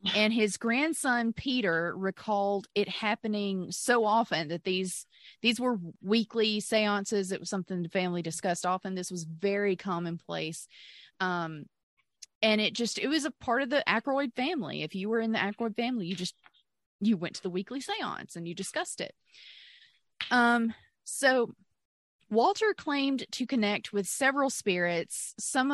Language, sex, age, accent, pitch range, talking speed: English, female, 20-39, American, 185-235 Hz, 155 wpm